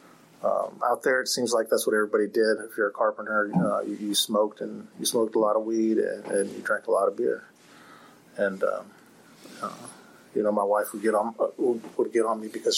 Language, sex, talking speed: English, male, 235 wpm